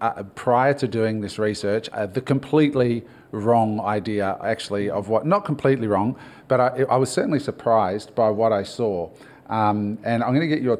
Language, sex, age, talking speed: English, male, 40-59, 190 wpm